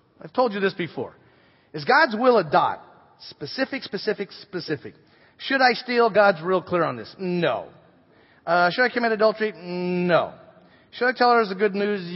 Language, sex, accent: English, male, American